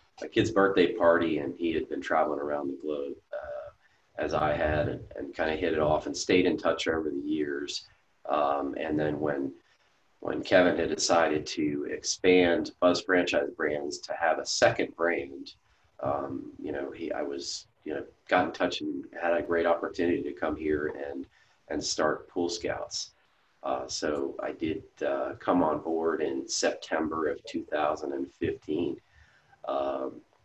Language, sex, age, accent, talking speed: English, male, 30-49, American, 170 wpm